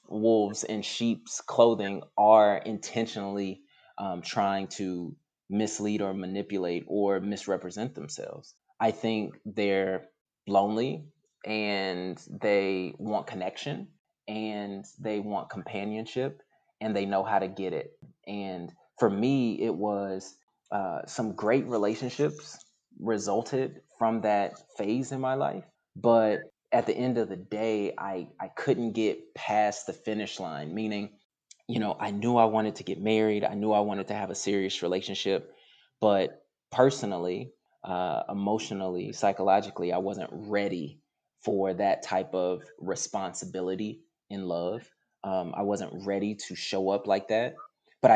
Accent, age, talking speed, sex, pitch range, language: American, 20-39, 135 wpm, male, 95-110 Hz, English